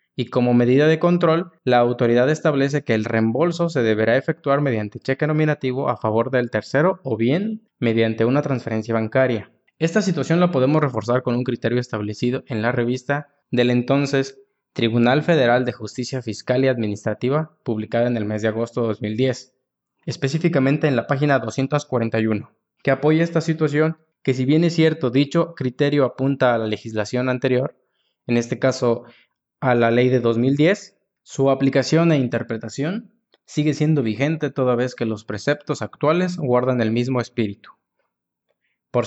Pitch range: 120-150 Hz